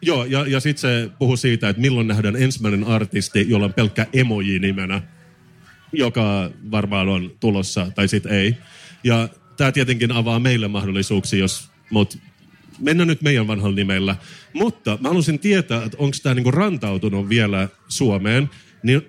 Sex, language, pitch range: male, Finnish, 105-145 Hz